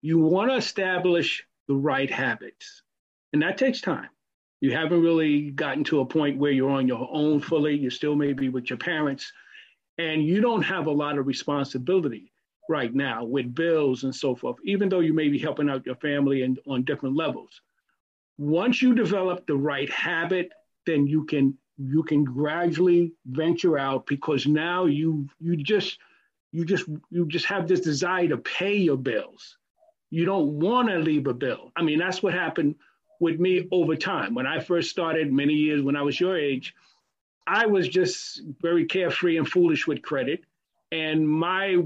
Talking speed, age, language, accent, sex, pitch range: 180 wpm, 50-69, English, American, male, 145-180 Hz